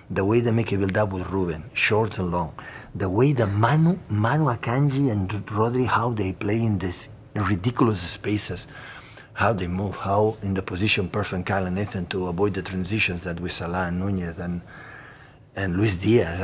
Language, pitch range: English, 95-120 Hz